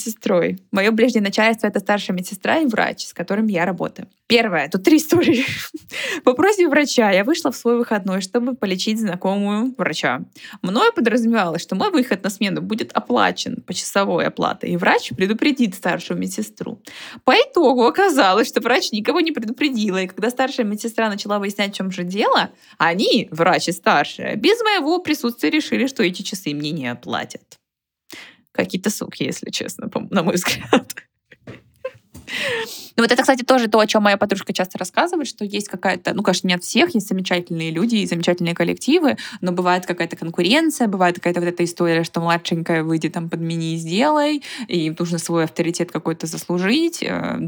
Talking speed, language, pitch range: 170 wpm, Russian, 175-245 Hz